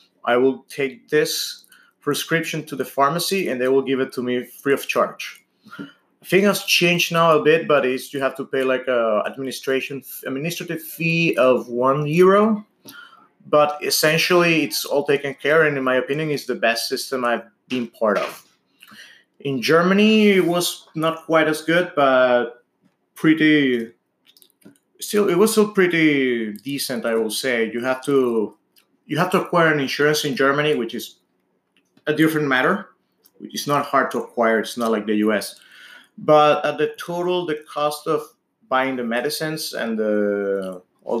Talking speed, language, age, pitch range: 165 wpm, English, 30-49, 125-160 Hz